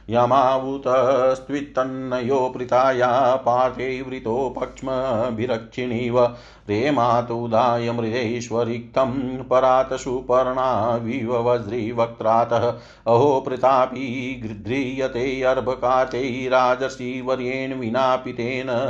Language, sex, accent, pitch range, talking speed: Hindi, male, native, 120-130 Hz, 50 wpm